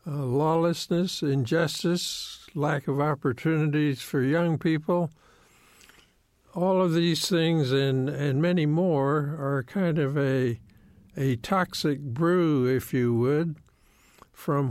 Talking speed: 115 wpm